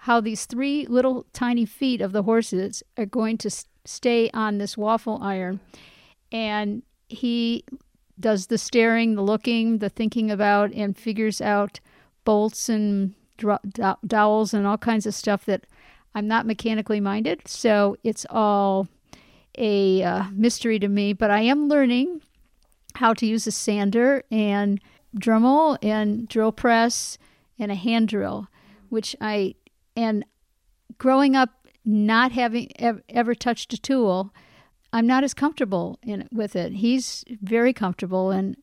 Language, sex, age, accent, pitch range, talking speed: English, female, 50-69, American, 205-240 Hz, 145 wpm